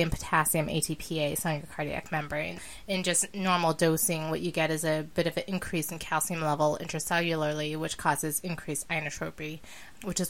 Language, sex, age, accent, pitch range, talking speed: English, female, 20-39, American, 155-175 Hz, 175 wpm